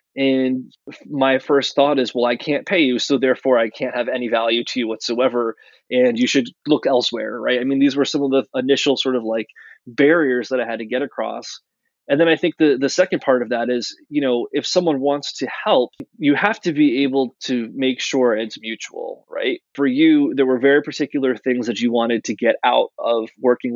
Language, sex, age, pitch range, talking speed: English, male, 20-39, 120-145 Hz, 220 wpm